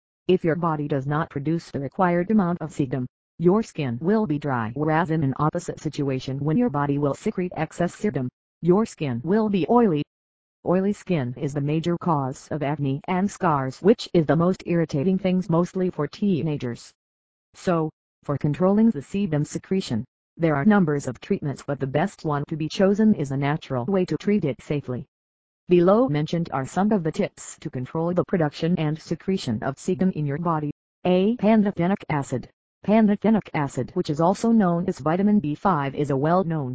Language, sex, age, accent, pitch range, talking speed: English, female, 40-59, American, 140-185 Hz, 185 wpm